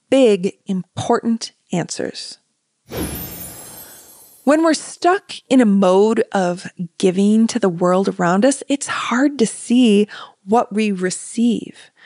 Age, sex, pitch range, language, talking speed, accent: 20-39, female, 210-280 Hz, English, 115 wpm, American